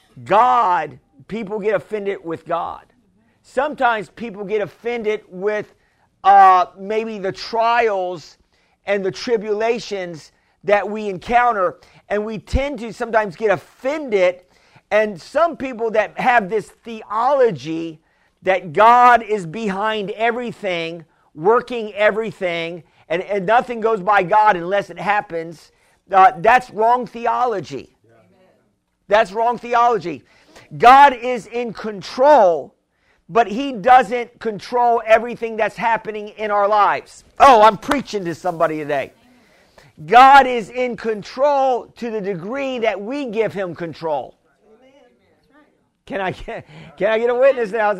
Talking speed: 125 wpm